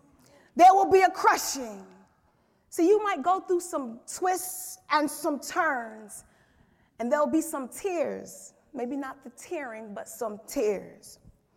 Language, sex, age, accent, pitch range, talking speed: English, female, 30-49, American, 295-395 Hz, 140 wpm